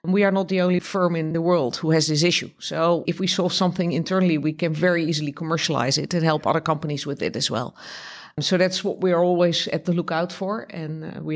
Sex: female